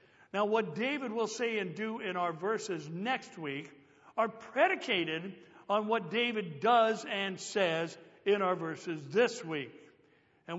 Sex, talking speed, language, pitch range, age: male, 145 wpm, English, 175-240 Hz, 60-79